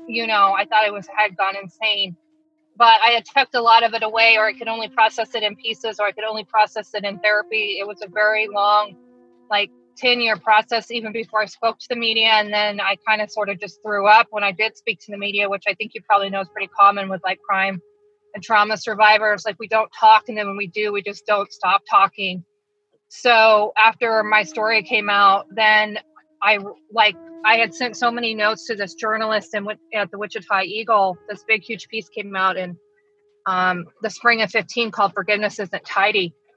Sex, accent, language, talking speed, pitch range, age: female, American, English, 220 wpm, 200-230 Hz, 20-39